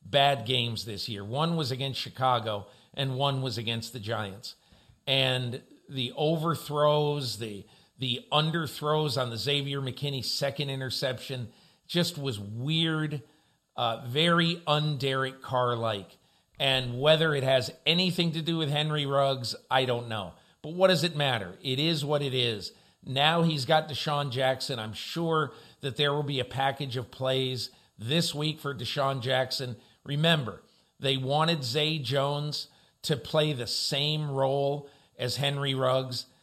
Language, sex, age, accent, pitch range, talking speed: English, male, 50-69, American, 125-155 Hz, 150 wpm